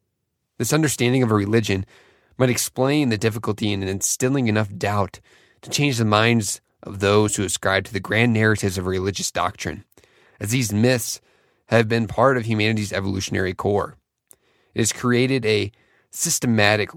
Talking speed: 150 wpm